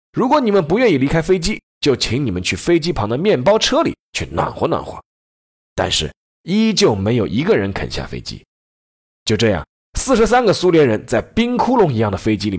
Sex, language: male, Chinese